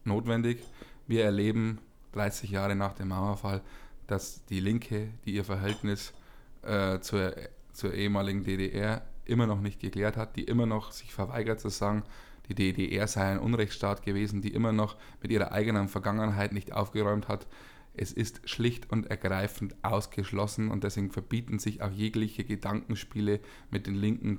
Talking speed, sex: 155 wpm, male